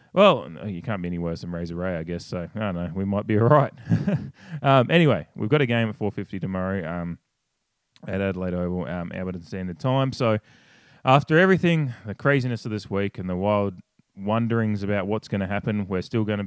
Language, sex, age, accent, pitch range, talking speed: English, male, 20-39, Australian, 95-130 Hz, 210 wpm